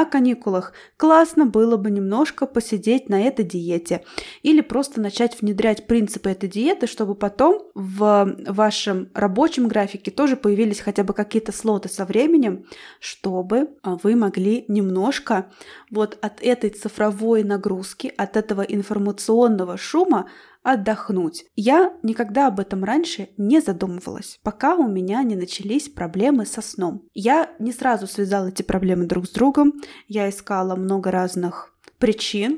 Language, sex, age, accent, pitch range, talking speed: Russian, female, 20-39, native, 195-240 Hz, 135 wpm